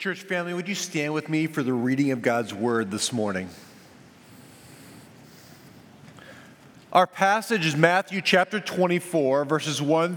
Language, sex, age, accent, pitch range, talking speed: English, male, 40-59, American, 135-185 Hz, 135 wpm